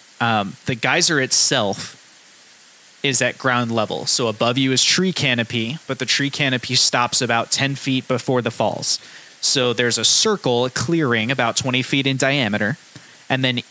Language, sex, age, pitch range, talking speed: English, male, 20-39, 125-150 Hz, 160 wpm